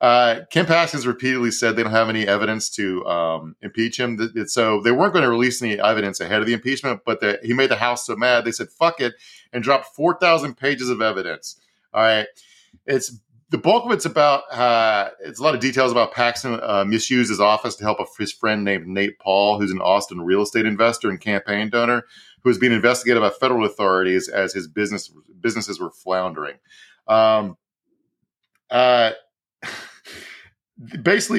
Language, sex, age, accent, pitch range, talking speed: English, male, 40-59, American, 105-135 Hz, 190 wpm